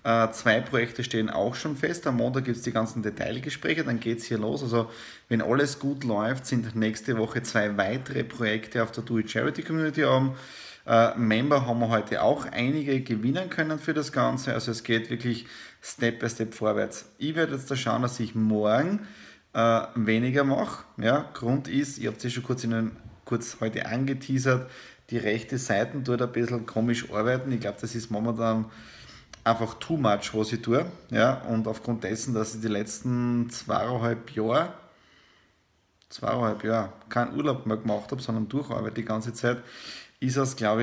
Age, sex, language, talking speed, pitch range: 20-39, male, German, 175 wpm, 110-130 Hz